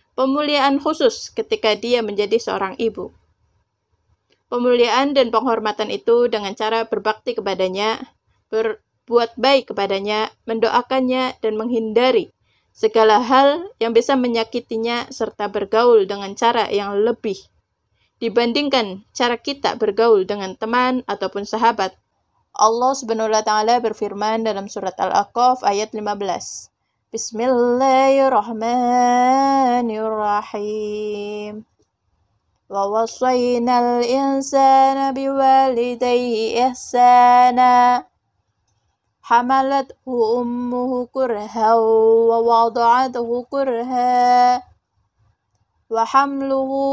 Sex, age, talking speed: female, 20-39, 80 wpm